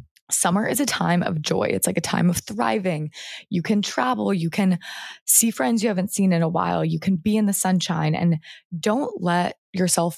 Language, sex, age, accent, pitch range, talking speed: English, female, 20-39, American, 160-185 Hz, 205 wpm